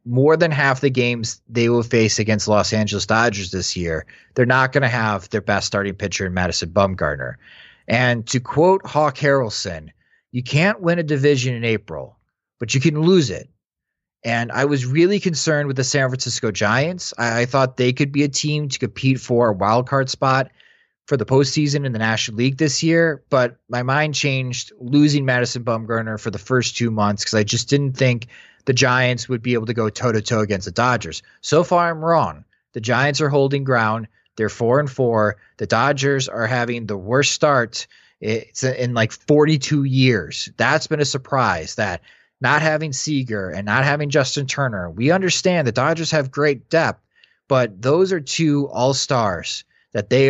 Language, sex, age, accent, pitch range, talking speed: English, male, 30-49, American, 110-145 Hz, 190 wpm